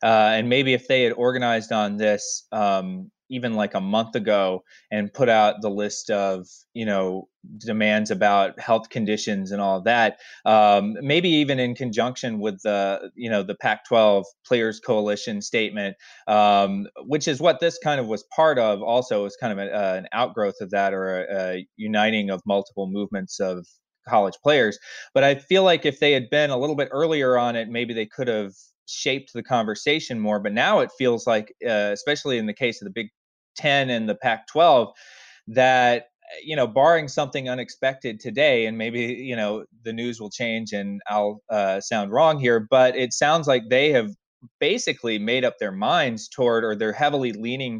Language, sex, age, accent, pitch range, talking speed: English, male, 20-39, American, 105-130 Hz, 190 wpm